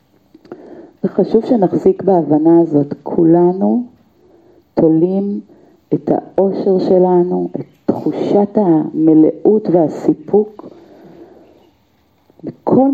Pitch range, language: 155-200 Hz, Hebrew